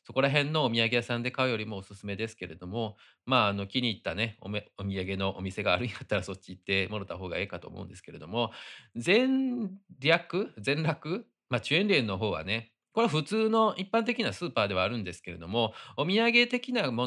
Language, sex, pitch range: Japanese, male, 100-160 Hz